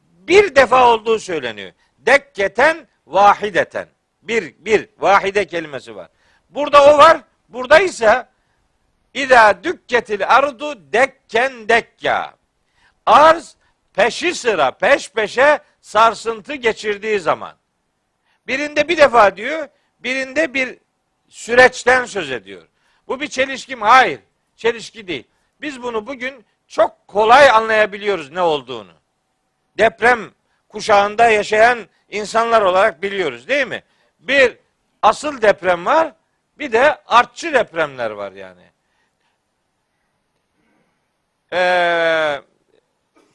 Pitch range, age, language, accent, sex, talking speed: 205-280 Hz, 60-79, Turkish, native, male, 95 wpm